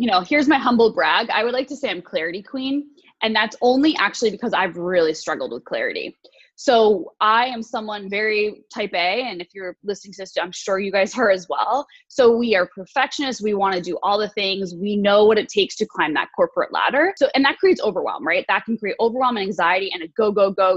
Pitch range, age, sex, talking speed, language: 195-275 Hz, 20-39, female, 235 wpm, English